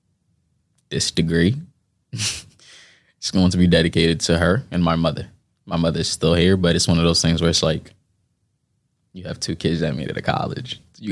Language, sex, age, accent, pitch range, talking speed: English, male, 20-39, American, 85-95 Hz, 195 wpm